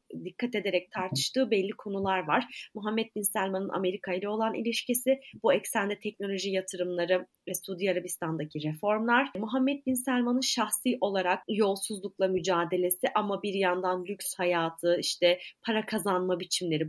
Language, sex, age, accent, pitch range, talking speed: Turkish, female, 30-49, native, 180-245 Hz, 130 wpm